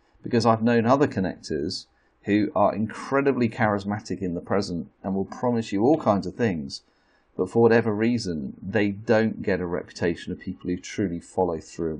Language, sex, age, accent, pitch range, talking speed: English, male, 40-59, British, 85-115 Hz, 175 wpm